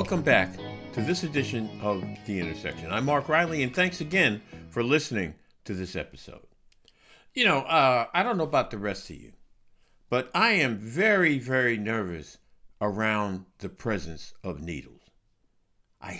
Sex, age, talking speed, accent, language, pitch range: male, 60-79, 155 wpm, American, English, 105-145 Hz